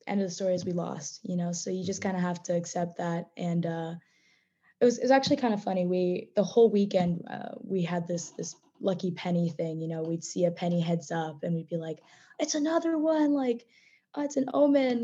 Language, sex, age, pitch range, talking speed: English, female, 20-39, 175-220 Hz, 240 wpm